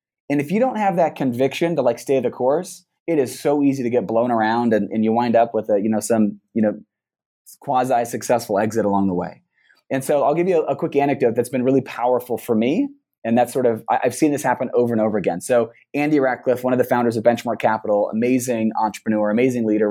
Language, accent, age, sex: English, American, 30-49, male